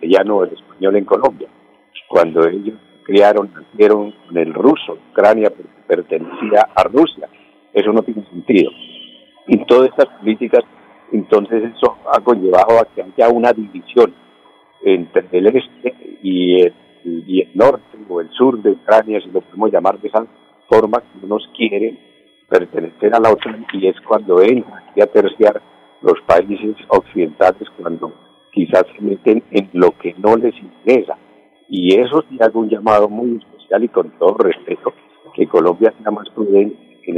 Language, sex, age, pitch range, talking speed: Spanish, male, 50-69, 90-120 Hz, 155 wpm